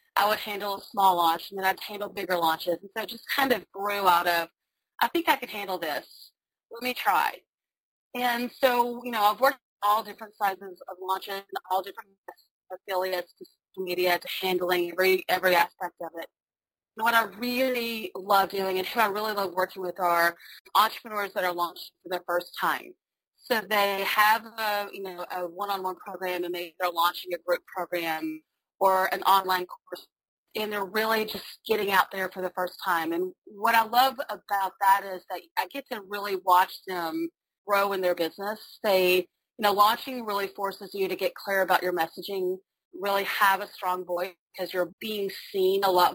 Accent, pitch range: American, 180-215 Hz